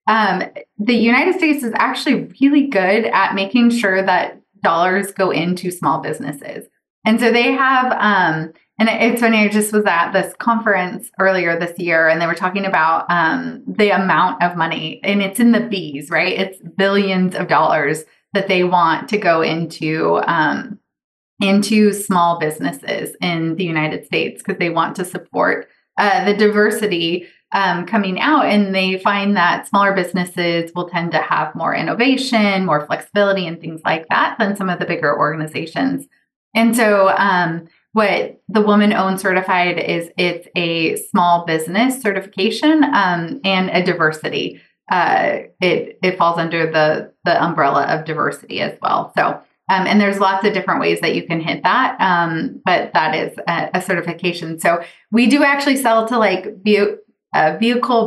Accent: American